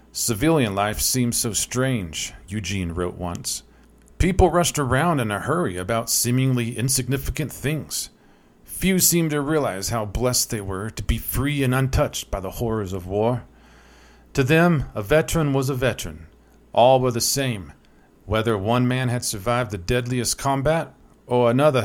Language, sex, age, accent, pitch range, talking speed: English, male, 40-59, American, 100-135 Hz, 155 wpm